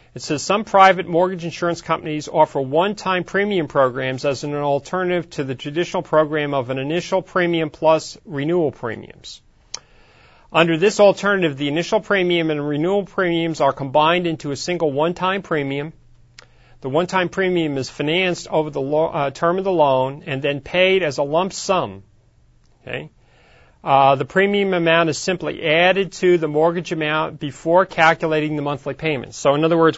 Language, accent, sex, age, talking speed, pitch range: English, American, male, 40-59, 160 wpm, 140-175 Hz